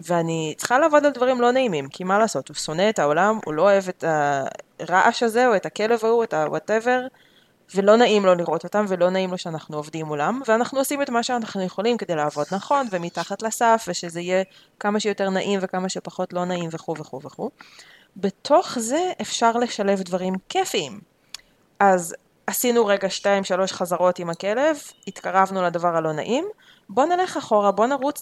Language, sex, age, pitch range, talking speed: Hebrew, female, 20-39, 185-240 Hz, 175 wpm